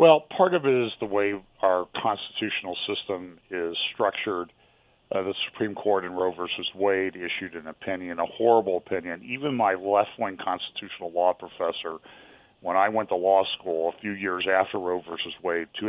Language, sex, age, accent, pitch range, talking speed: English, male, 40-59, American, 90-110 Hz, 175 wpm